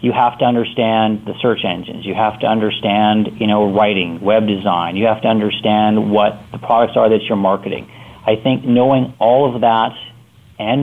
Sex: male